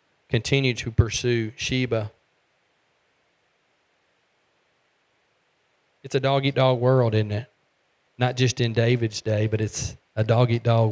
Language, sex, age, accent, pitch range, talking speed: English, male, 40-59, American, 115-135 Hz, 105 wpm